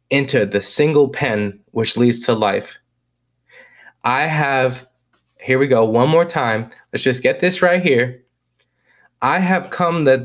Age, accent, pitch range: 20-39, American, 120-140 Hz